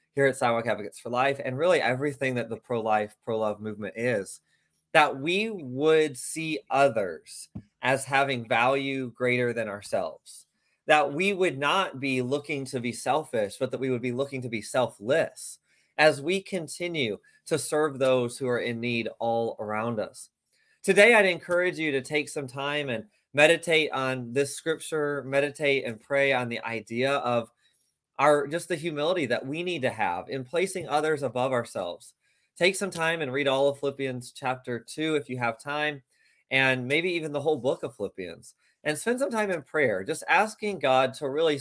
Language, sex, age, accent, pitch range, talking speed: English, male, 20-39, American, 125-155 Hz, 180 wpm